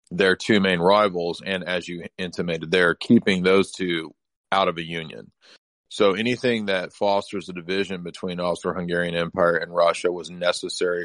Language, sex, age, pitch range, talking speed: English, male, 30-49, 85-100 Hz, 155 wpm